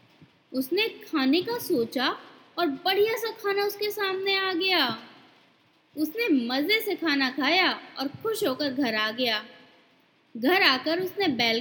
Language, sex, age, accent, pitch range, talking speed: Hindi, female, 20-39, native, 280-375 Hz, 140 wpm